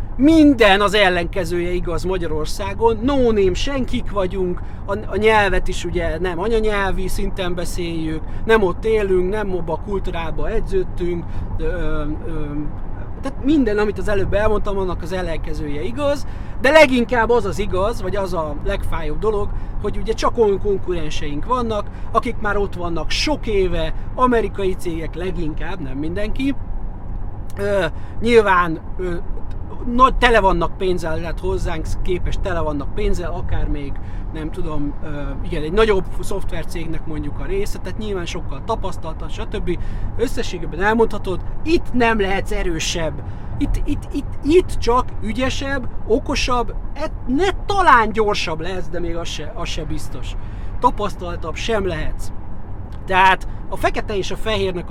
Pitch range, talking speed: 155-220 Hz, 140 wpm